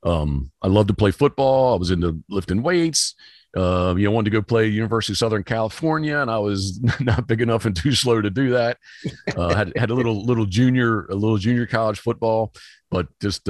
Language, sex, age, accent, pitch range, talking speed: English, male, 40-59, American, 95-115 Hz, 215 wpm